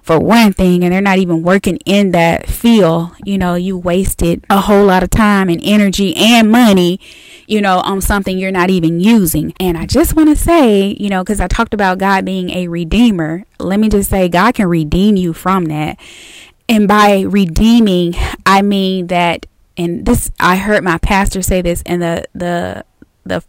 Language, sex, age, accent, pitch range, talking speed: English, female, 20-39, American, 180-210 Hz, 195 wpm